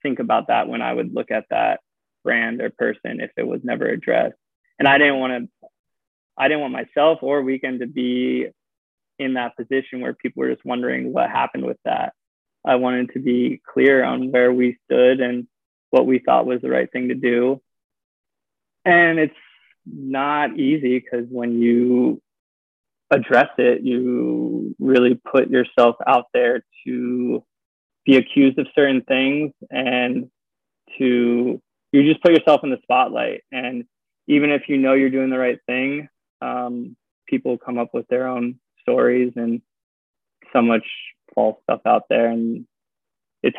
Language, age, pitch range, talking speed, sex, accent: English, 20-39, 120-140 Hz, 160 wpm, male, American